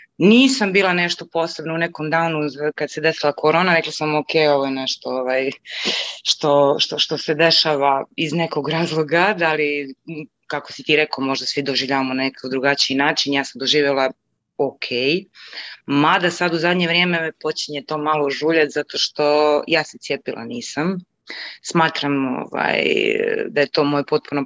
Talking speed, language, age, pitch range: 160 wpm, Croatian, 20-39, 140-180 Hz